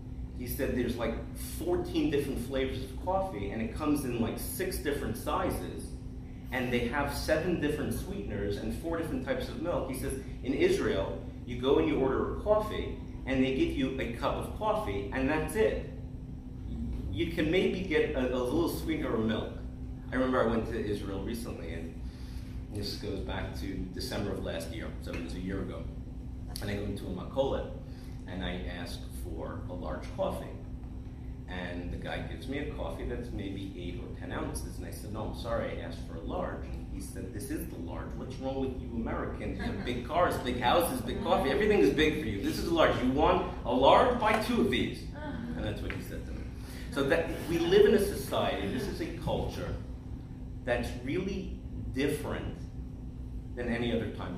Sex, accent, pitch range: male, American, 90-130 Hz